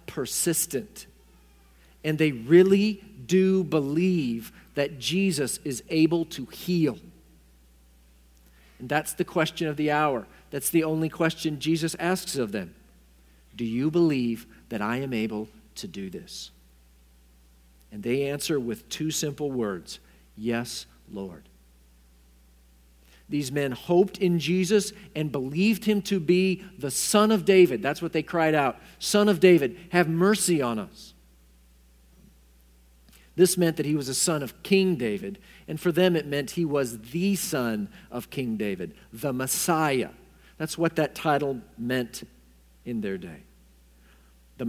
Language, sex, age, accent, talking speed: English, male, 50-69, American, 140 wpm